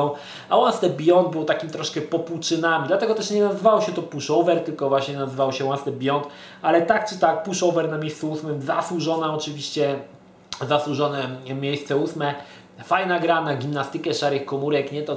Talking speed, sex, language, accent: 160 wpm, male, Polish, native